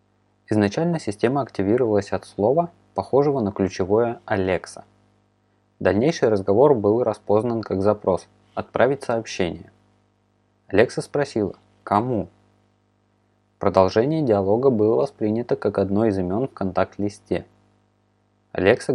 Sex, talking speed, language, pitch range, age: male, 100 wpm, Russian, 100-110 Hz, 20-39